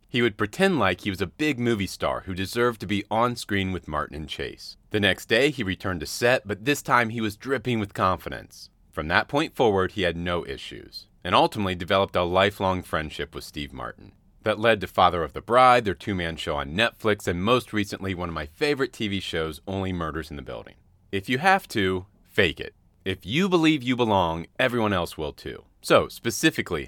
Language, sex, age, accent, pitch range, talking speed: English, male, 30-49, American, 90-120 Hz, 210 wpm